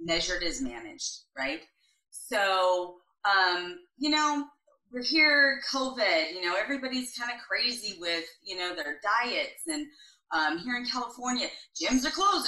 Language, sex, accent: English, female, American